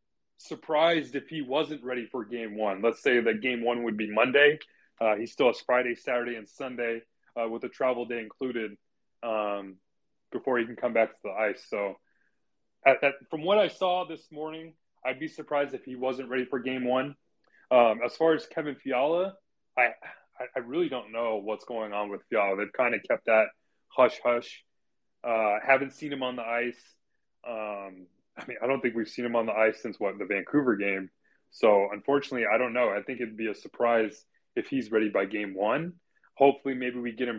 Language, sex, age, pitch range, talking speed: English, male, 20-39, 115-140 Hz, 205 wpm